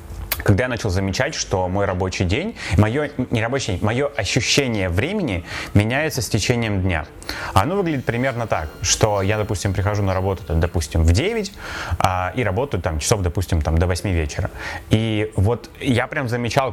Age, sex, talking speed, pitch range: 30-49, male, 160 wpm, 95-120 Hz